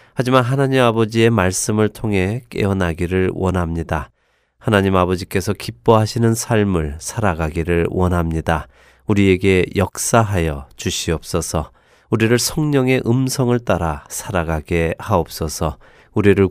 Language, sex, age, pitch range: Korean, male, 30-49, 90-115 Hz